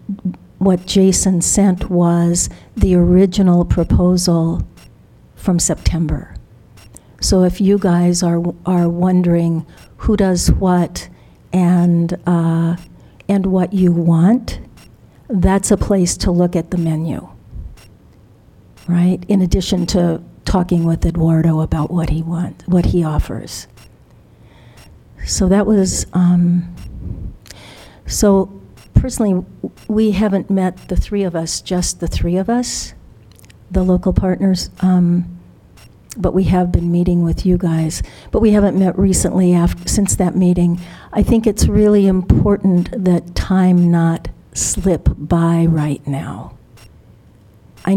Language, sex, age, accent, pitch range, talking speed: English, female, 60-79, American, 165-185 Hz, 125 wpm